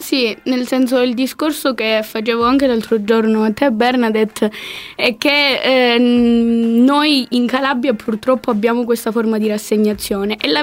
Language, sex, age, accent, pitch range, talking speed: Italian, female, 10-29, native, 230-275 Hz, 150 wpm